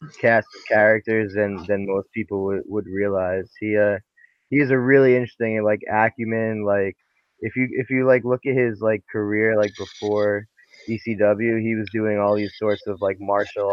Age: 20-39